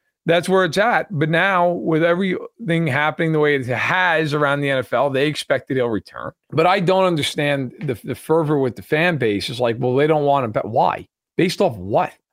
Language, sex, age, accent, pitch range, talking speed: English, male, 40-59, American, 145-180 Hz, 215 wpm